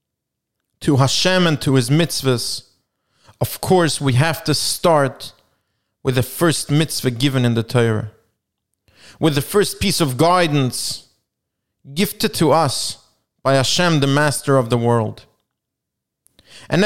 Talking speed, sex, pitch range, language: 130 wpm, male, 130-185 Hz, English